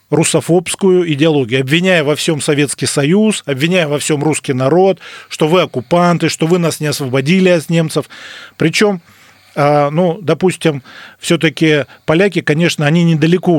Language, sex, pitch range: Russian, male, 140-175 Hz